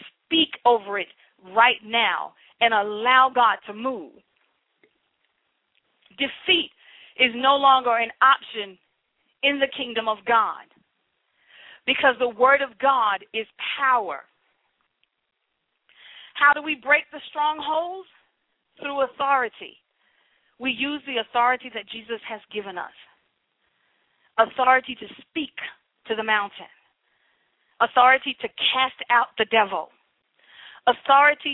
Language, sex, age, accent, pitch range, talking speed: English, female, 40-59, American, 225-280 Hz, 110 wpm